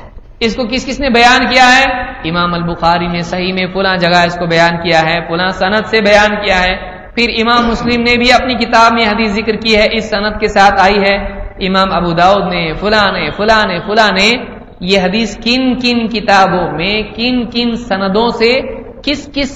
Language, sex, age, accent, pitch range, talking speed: English, male, 50-69, Indian, 190-235 Hz, 185 wpm